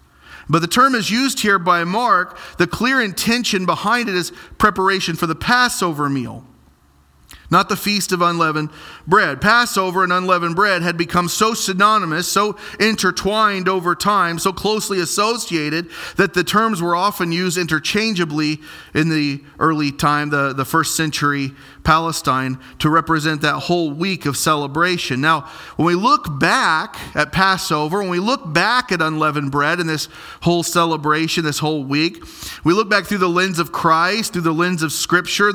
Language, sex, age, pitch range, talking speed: English, male, 40-59, 155-205 Hz, 165 wpm